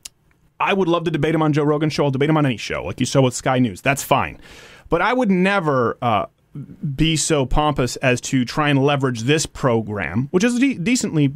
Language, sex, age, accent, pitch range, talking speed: English, male, 30-49, American, 125-170 Hz, 225 wpm